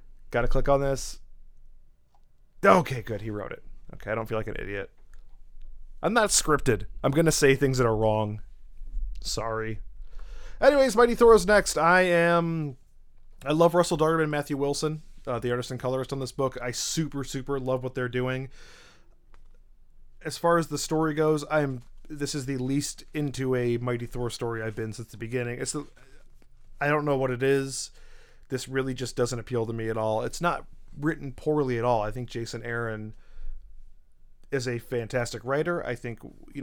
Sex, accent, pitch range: male, American, 115-145 Hz